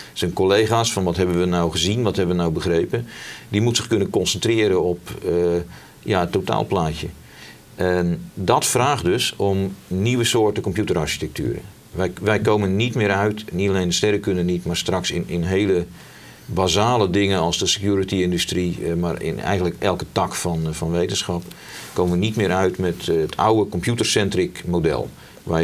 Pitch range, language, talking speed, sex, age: 90-110 Hz, Dutch, 175 wpm, male, 50-69